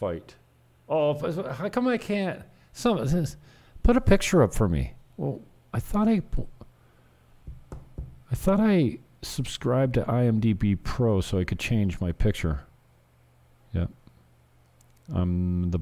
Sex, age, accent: male, 50-69, American